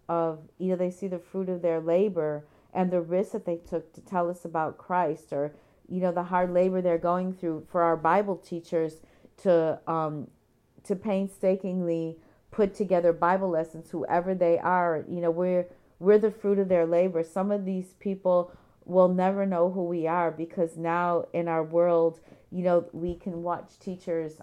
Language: English